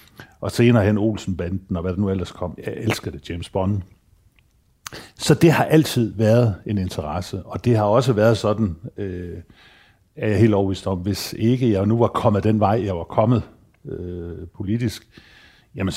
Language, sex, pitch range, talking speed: Danish, male, 90-110 Hz, 185 wpm